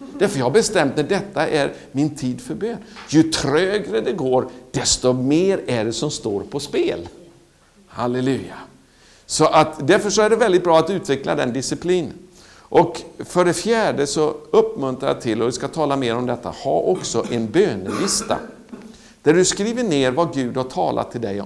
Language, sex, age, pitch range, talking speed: Swedish, male, 60-79, 130-185 Hz, 180 wpm